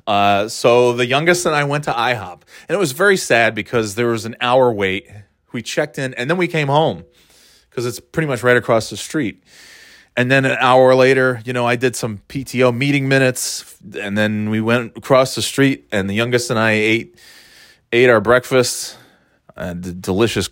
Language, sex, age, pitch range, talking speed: English, male, 30-49, 100-130 Hz, 195 wpm